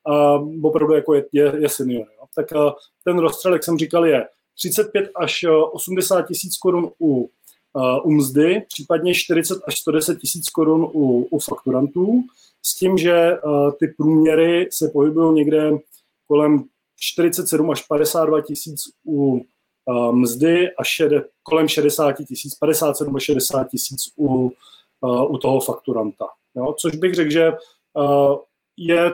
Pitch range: 145-165 Hz